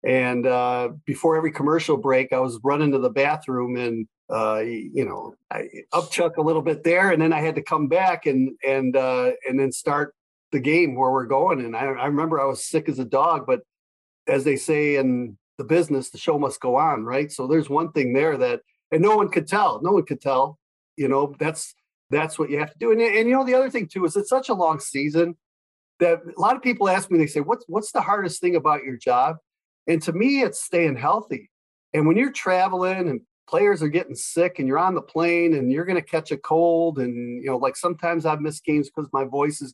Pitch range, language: 135-170 Hz, English